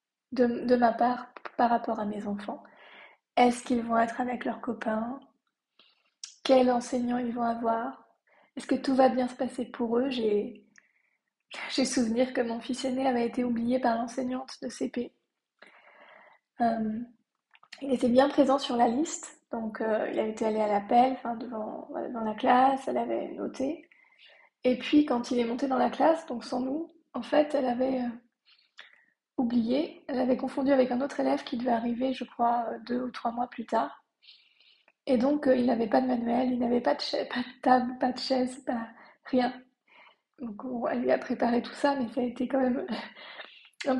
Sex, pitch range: female, 235-270 Hz